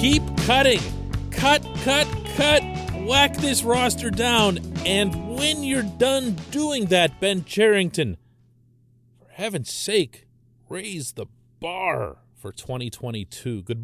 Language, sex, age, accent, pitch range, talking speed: English, male, 40-59, American, 105-140 Hz, 115 wpm